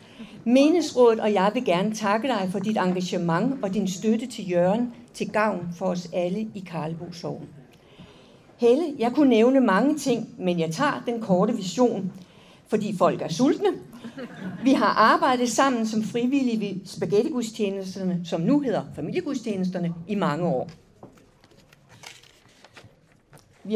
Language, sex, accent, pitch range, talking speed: Danish, female, native, 180-245 Hz, 140 wpm